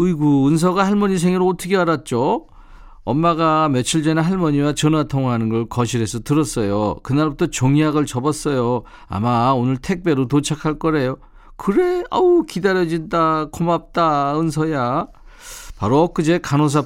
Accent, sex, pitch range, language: native, male, 125-170 Hz, Korean